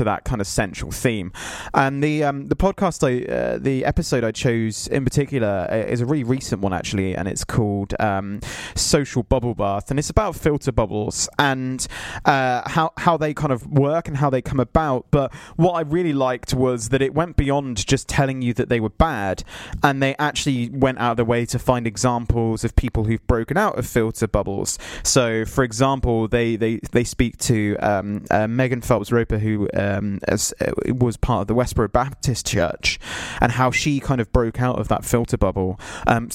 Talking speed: 200 wpm